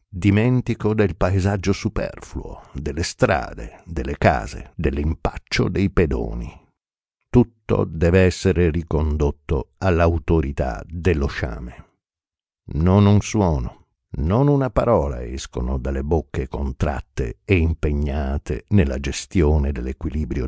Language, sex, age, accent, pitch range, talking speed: Italian, male, 60-79, native, 70-95 Hz, 95 wpm